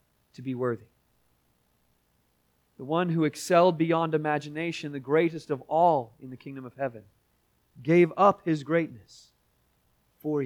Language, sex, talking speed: English, male, 130 wpm